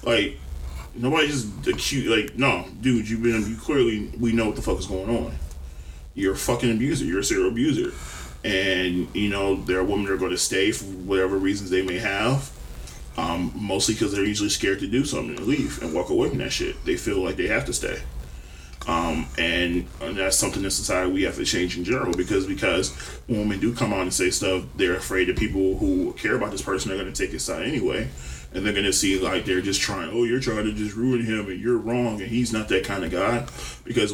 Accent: American